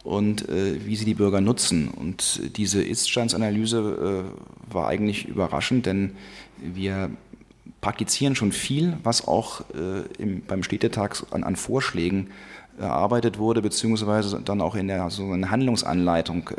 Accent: German